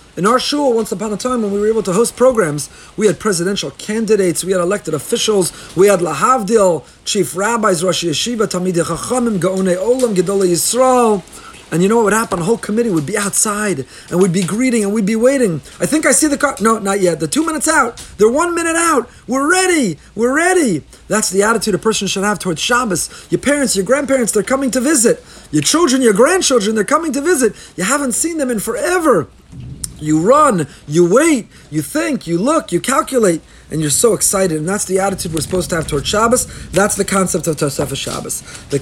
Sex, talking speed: male, 210 wpm